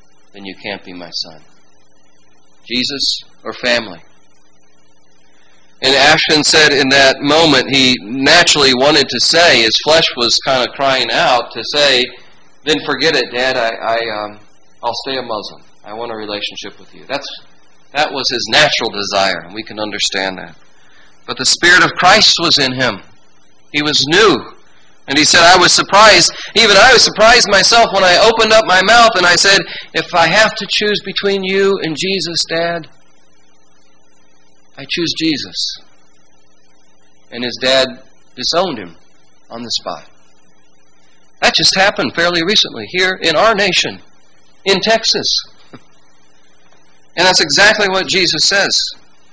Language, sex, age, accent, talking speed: English, male, 40-59, American, 155 wpm